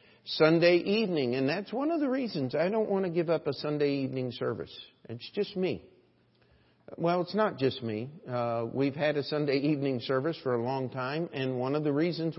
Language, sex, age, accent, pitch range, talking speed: English, male, 50-69, American, 120-155 Hz, 205 wpm